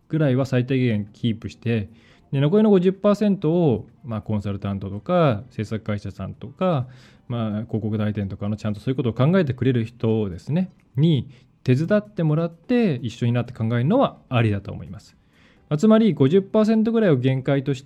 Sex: male